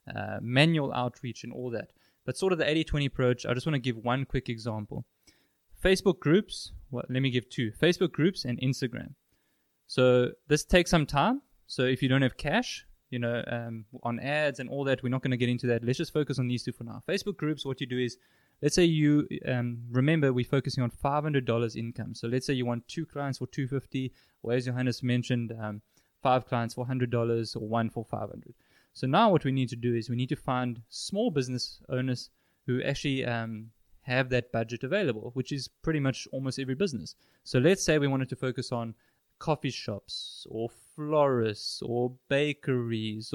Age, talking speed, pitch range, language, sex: 20-39, 205 wpm, 120-150 Hz, English, male